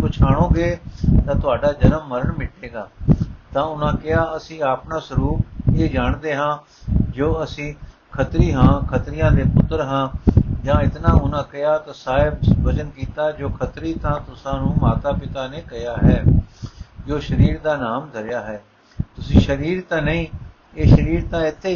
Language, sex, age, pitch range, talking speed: Punjabi, male, 60-79, 125-155 Hz, 155 wpm